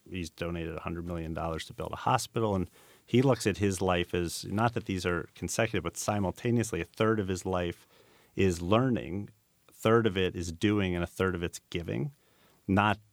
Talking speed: 200 wpm